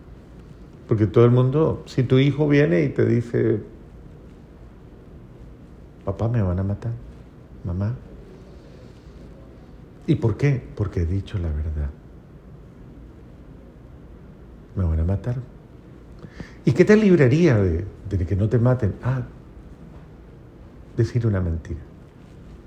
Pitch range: 95-140 Hz